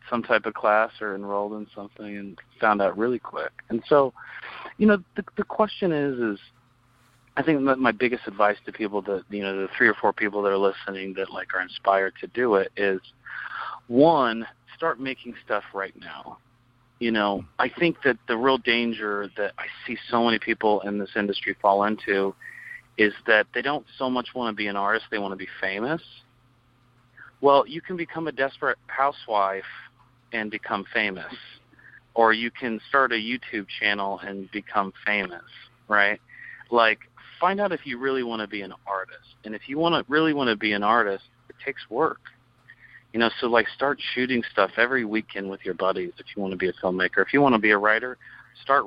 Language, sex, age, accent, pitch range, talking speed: English, male, 30-49, American, 100-130 Hz, 200 wpm